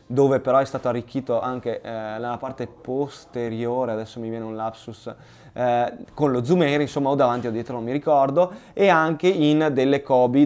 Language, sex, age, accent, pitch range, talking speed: Italian, male, 20-39, native, 125-155 Hz, 190 wpm